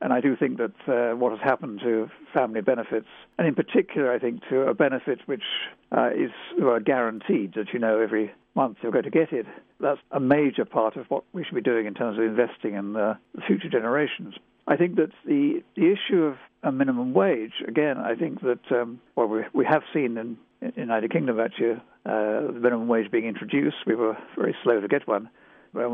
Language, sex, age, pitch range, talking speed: English, male, 60-79, 115-145 Hz, 215 wpm